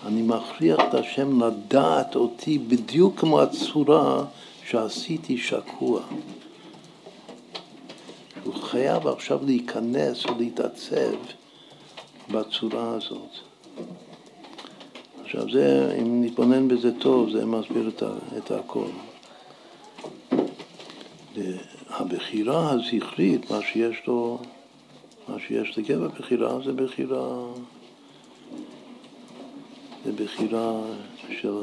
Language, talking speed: Hebrew, 80 wpm